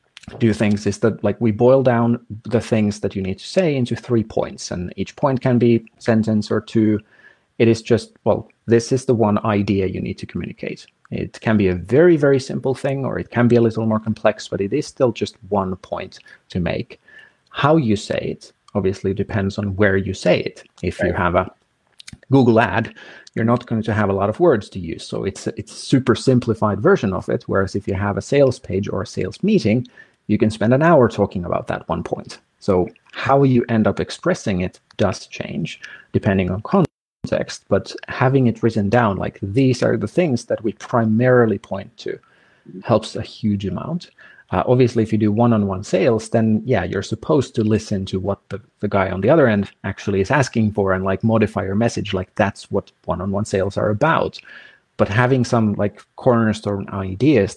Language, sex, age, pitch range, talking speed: English, male, 30-49, 100-120 Hz, 205 wpm